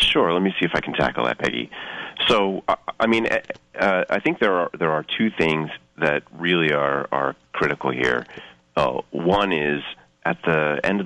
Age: 30-49